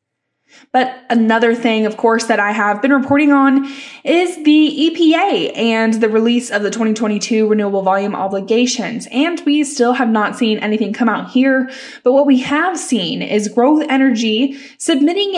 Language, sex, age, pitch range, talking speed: English, female, 10-29, 220-275 Hz, 165 wpm